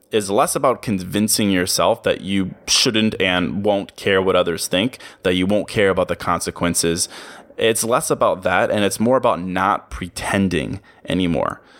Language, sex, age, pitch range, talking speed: English, male, 20-39, 95-115 Hz, 165 wpm